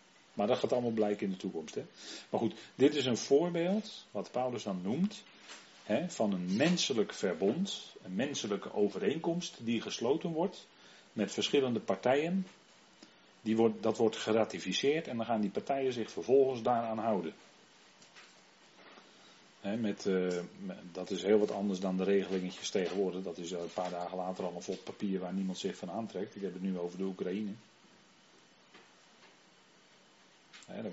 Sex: male